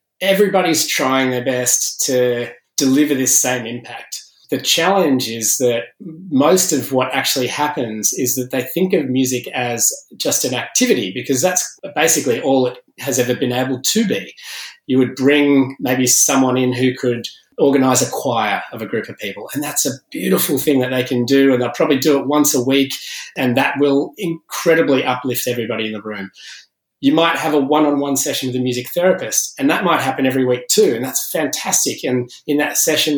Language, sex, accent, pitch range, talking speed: English, male, Australian, 125-145 Hz, 190 wpm